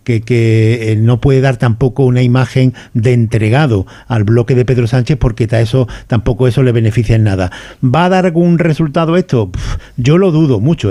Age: 50-69